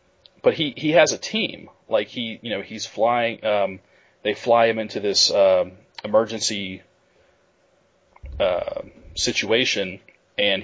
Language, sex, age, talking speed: English, male, 30-49, 130 wpm